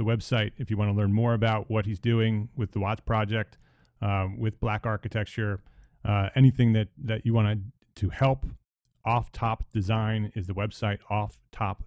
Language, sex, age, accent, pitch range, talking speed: English, male, 30-49, American, 100-120 Hz, 185 wpm